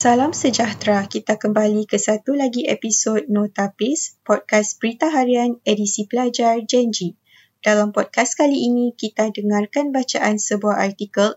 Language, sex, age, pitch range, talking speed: Malay, female, 20-39, 200-230 Hz, 125 wpm